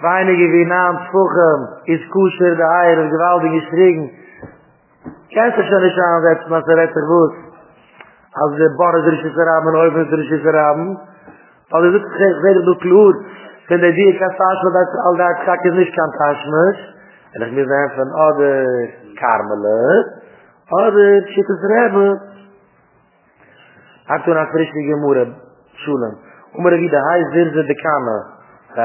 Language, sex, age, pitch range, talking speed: English, male, 30-49, 140-180 Hz, 125 wpm